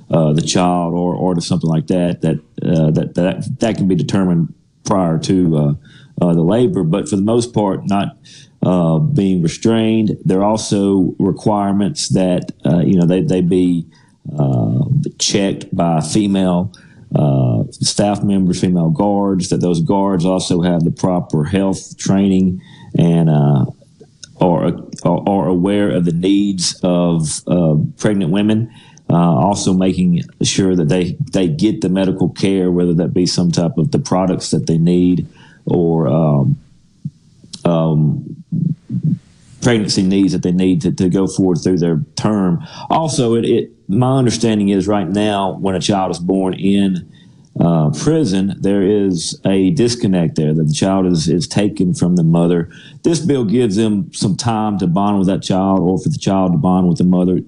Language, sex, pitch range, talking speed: English, male, 85-100 Hz, 165 wpm